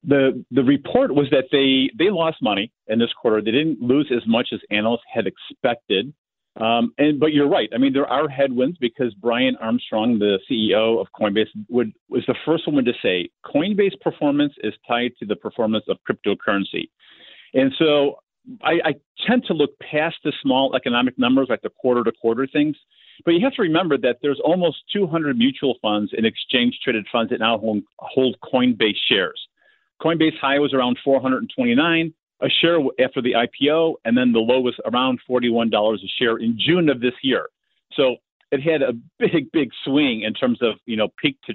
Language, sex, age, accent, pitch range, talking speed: English, male, 40-59, American, 115-165 Hz, 190 wpm